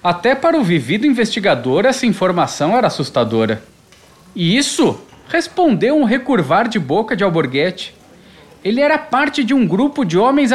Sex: male